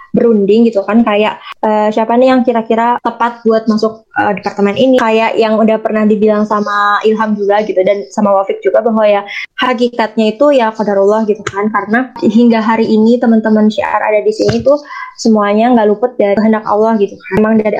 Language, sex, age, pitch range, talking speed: Indonesian, female, 20-39, 210-240 Hz, 190 wpm